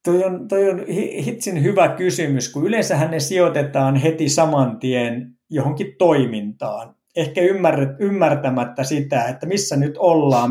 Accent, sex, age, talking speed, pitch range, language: native, male, 60-79, 125 wpm, 130-175 Hz, Finnish